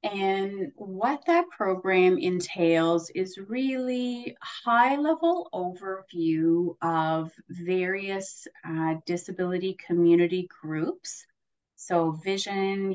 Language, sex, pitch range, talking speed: English, female, 165-200 Hz, 85 wpm